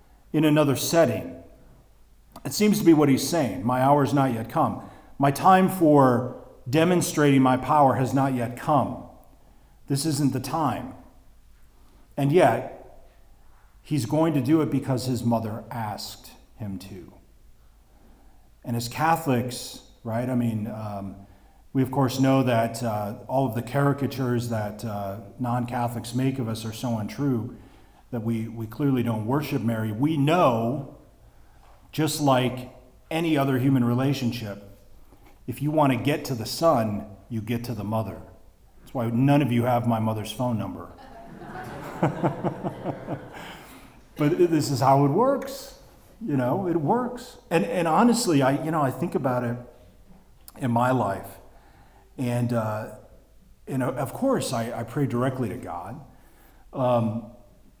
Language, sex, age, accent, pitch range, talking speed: English, male, 40-59, American, 115-140 Hz, 145 wpm